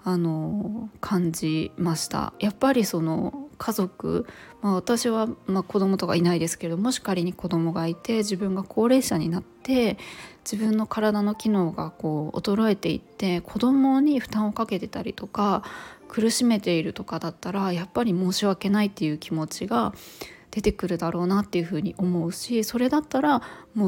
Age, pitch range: 20-39, 175-225 Hz